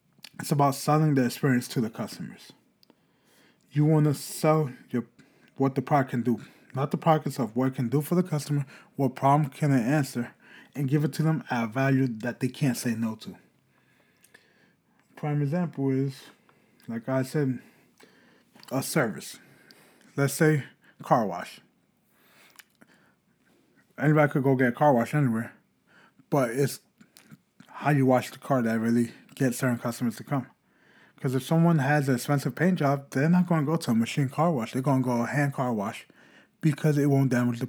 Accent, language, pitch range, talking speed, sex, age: American, English, 130-150 Hz, 180 wpm, male, 20-39